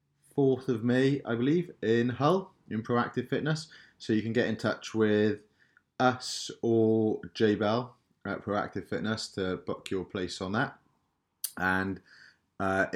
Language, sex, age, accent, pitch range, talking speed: English, male, 30-49, British, 95-115 Hz, 145 wpm